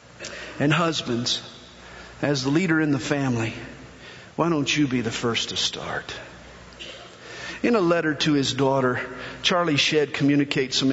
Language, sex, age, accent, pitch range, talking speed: English, male, 50-69, American, 145-245 Hz, 145 wpm